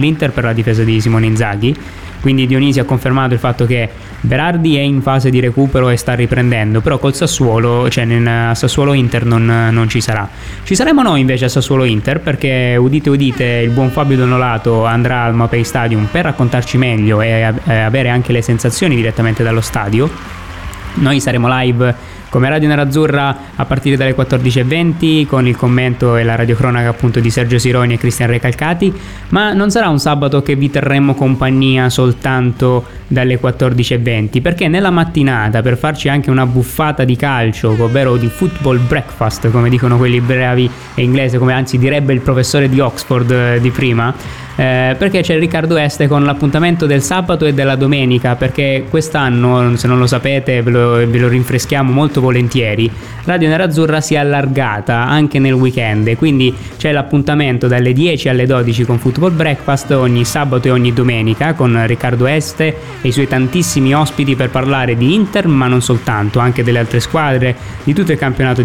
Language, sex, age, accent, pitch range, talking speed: Italian, male, 20-39, native, 120-140 Hz, 170 wpm